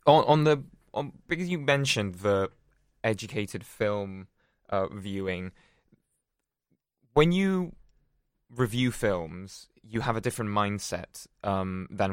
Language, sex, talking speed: English, male, 110 wpm